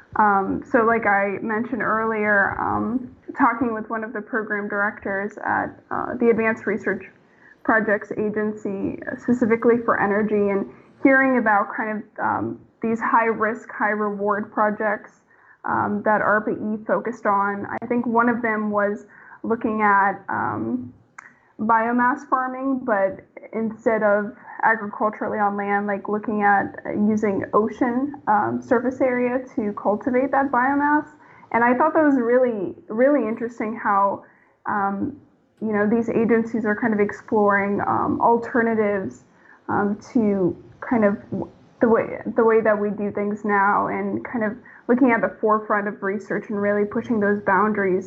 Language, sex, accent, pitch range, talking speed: English, female, American, 205-240 Hz, 145 wpm